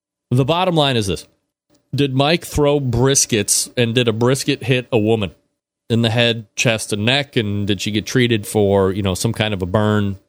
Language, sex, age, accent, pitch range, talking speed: English, male, 30-49, American, 105-140 Hz, 205 wpm